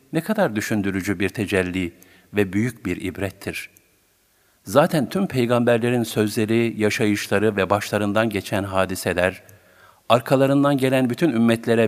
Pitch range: 100-120 Hz